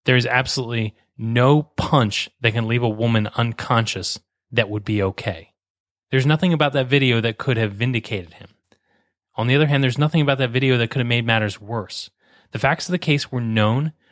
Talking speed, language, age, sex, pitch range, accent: 200 wpm, English, 30-49, male, 110-140 Hz, American